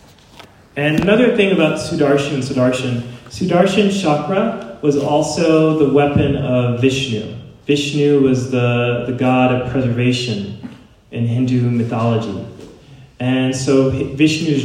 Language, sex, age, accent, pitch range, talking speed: English, male, 30-49, American, 125-140 Hz, 115 wpm